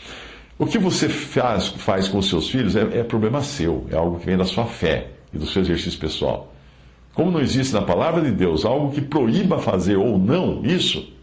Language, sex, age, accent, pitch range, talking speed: Portuguese, male, 60-79, Brazilian, 80-130 Hz, 210 wpm